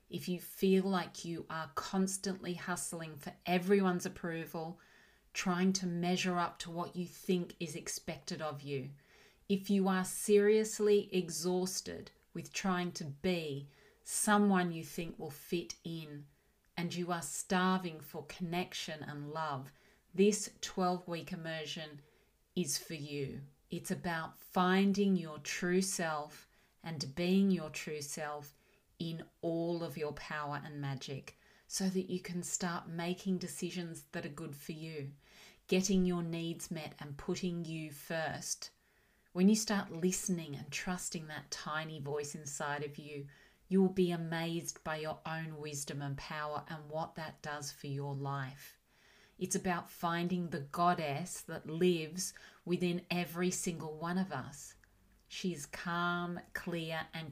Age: 40-59